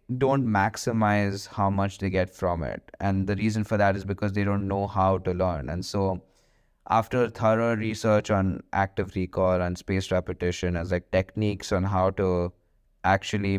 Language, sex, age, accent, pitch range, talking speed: English, male, 20-39, Indian, 95-105 Hz, 170 wpm